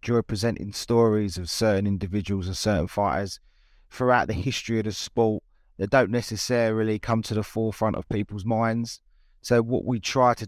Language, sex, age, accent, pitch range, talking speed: English, male, 30-49, British, 105-125 Hz, 170 wpm